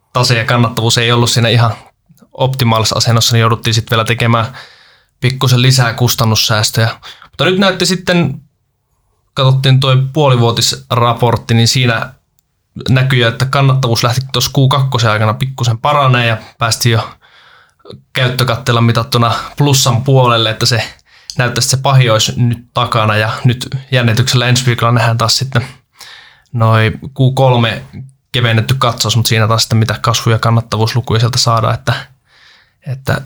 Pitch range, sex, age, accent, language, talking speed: 115-130 Hz, male, 20-39, native, Finnish, 135 wpm